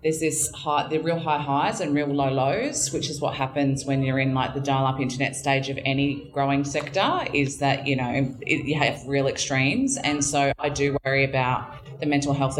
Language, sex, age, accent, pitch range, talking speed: English, female, 20-39, Australian, 130-145 Hz, 220 wpm